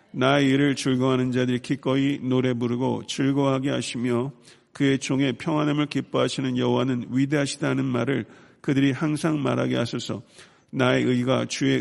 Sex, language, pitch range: male, Korean, 120-140 Hz